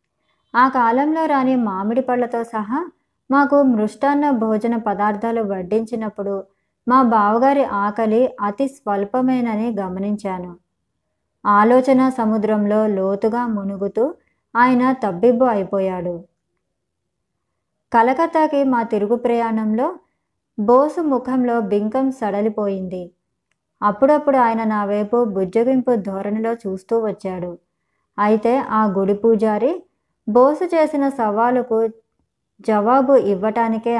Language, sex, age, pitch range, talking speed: Telugu, male, 20-39, 205-255 Hz, 85 wpm